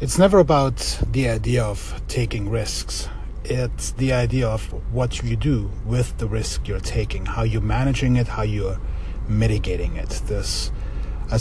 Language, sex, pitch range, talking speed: English, male, 100-140 Hz, 160 wpm